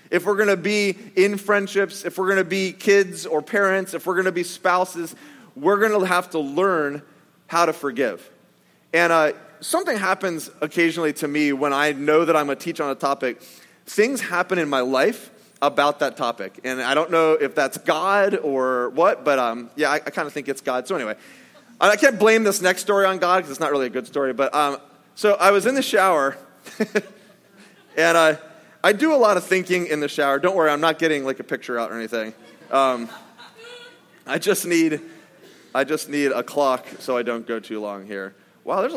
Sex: male